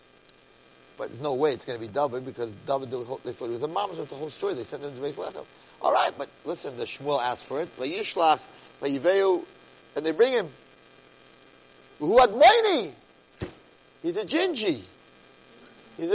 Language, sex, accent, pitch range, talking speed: English, male, American, 130-205 Hz, 165 wpm